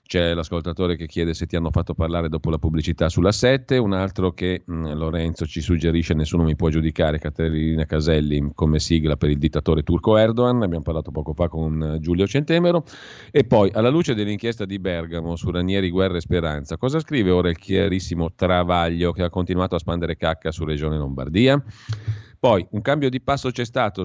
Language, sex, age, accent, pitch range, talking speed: Italian, male, 40-59, native, 80-105 Hz, 185 wpm